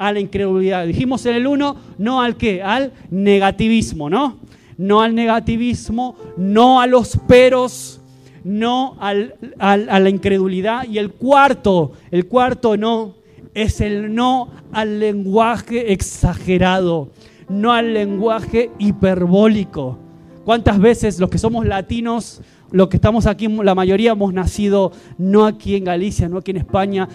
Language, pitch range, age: Spanish, 185-235 Hz, 30-49